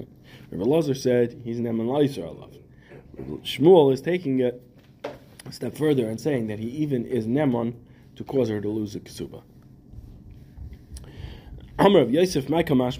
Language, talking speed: English, 140 wpm